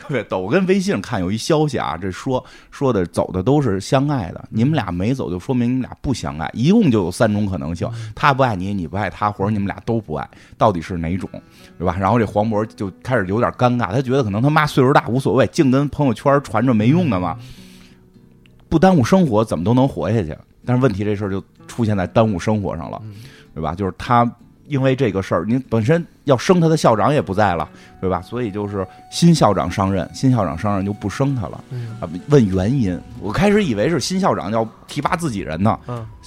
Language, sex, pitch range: Chinese, male, 100-140 Hz